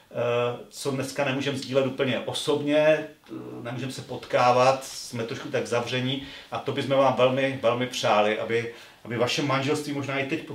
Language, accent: Czech, native